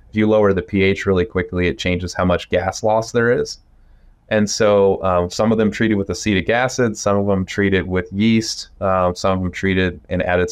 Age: 20-39